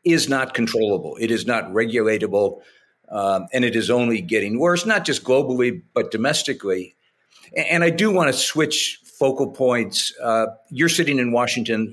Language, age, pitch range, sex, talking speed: English, 50-69, 115-140 Hz, male, 160 wpm